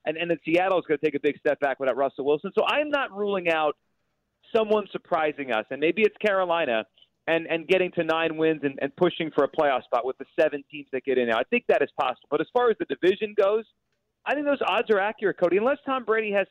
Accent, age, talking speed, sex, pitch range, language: American, 40-59, 255 wpm, male, 145-215 Hz, English